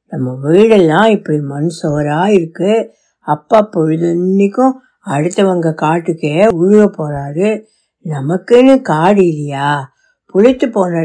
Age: 60-79